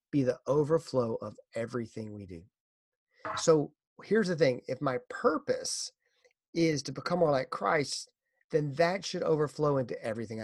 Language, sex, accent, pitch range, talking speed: English, male, American, 125-180 Hz, 150 wpm